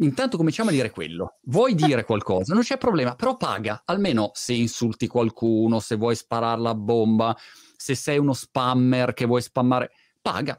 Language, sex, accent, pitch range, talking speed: Italian, male, native, 115-155 Hz, 170 wpm